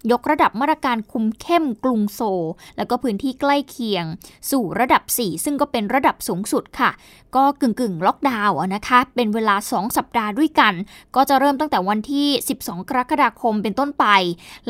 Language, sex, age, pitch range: Thai, female, 20-39, 215-275 Hz